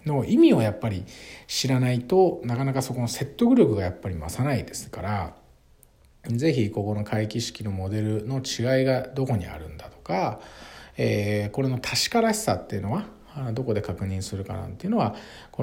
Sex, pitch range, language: male, 100-130 Hz, Japanese